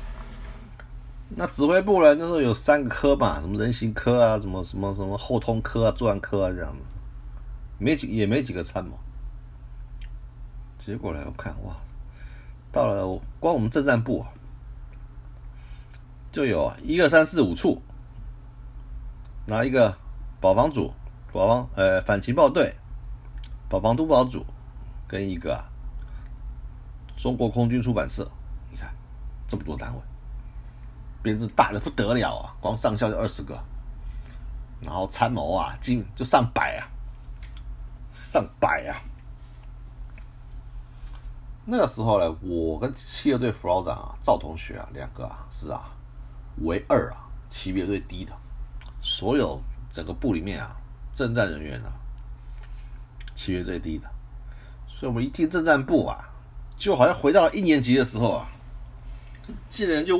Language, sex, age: Chinese, male, 50-69